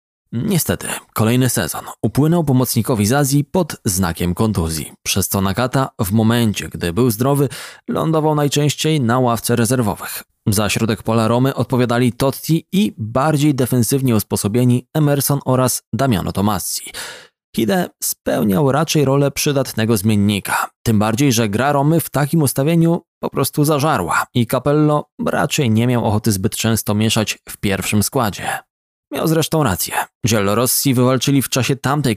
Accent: native